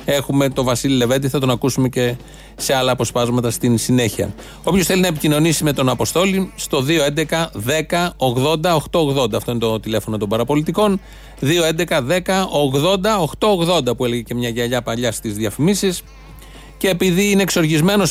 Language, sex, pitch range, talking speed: Greek, male, 125-170 Hz, 155 wpm